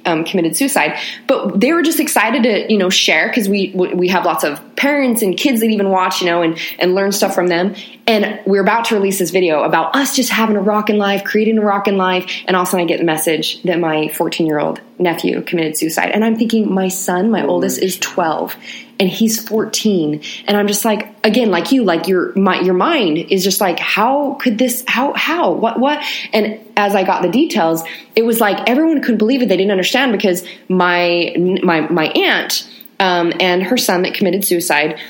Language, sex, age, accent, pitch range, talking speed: English, female, 20-39, American, 180-230 Hz, 220 wpm